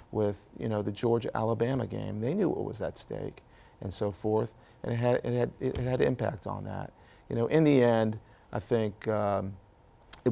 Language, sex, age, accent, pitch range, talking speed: English, male, 40-59, American, 105-120 Hz, 200 wpm